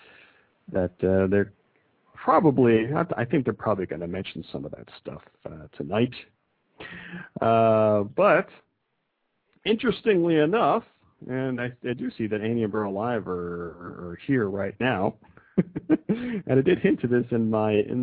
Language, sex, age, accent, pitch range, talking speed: English, male, 50-69, American, 105-150 Hz, 150 wpm